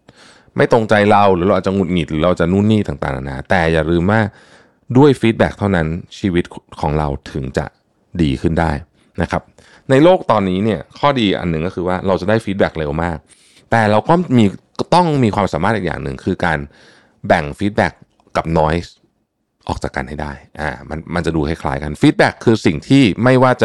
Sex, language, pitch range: male, Thai, 80-110 Hz